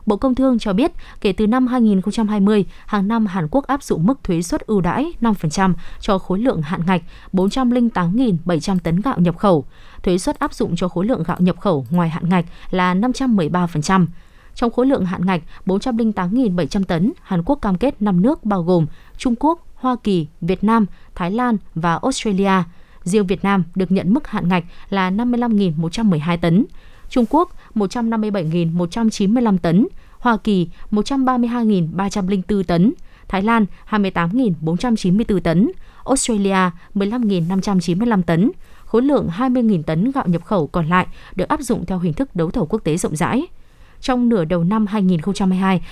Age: 20-39